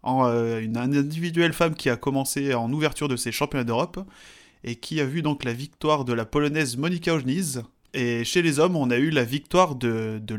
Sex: male